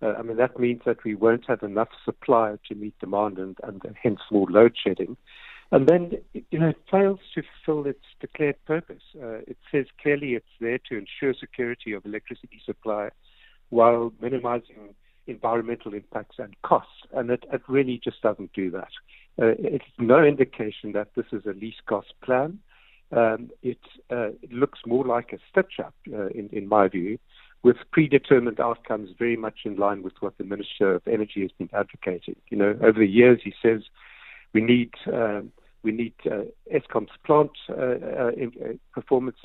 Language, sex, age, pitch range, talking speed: English, male, 60-79, 110-130 Hz, 170 wpm